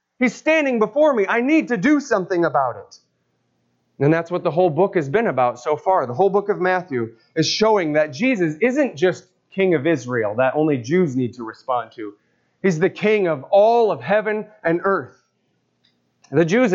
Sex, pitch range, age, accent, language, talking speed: male, 130-195 Hz, 30-49, American, English, 195 wpm